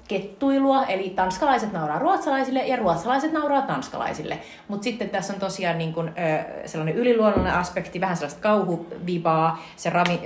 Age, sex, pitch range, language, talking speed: 30-49, female, 160-210 Hz, Finnish, 135 wpm